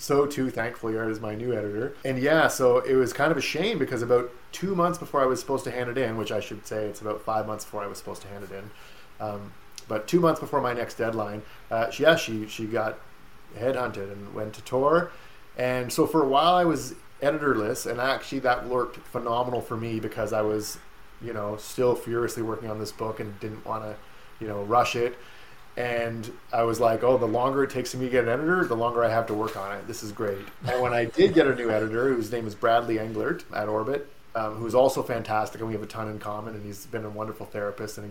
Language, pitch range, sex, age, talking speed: English, 110-135 Hz, male, 30-49, 245 wpm